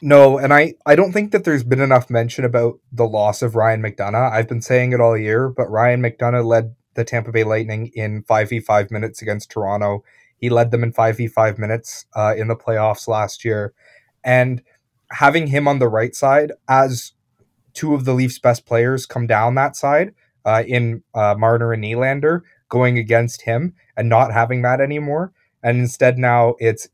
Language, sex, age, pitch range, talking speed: English, male, 20-39, 115-130 Hz, 185 wpm